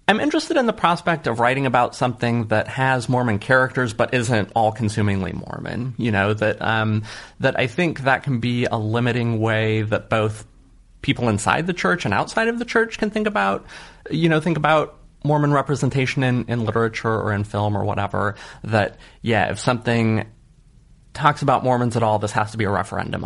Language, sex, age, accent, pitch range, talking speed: English, male, 30-49, American, 110-135 Hz, 190 wpm